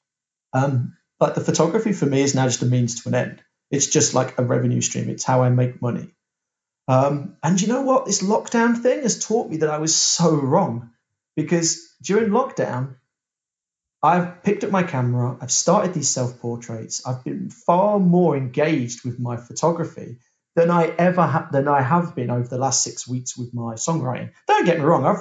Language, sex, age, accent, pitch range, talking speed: English, male, 30-49, British, 125-170 Hz, 200 wpm